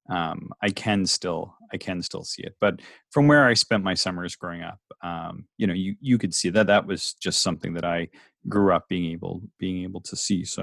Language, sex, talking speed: English, male, 230 wpm